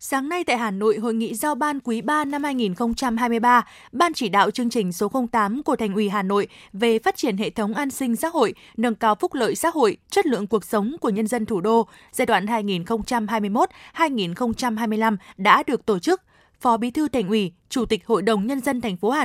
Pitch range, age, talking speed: 215-255 Hz, 20-39, 220 wpm